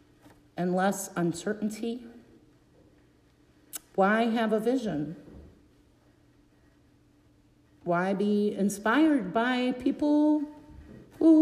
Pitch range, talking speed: 175-245 Hz, 70 wpm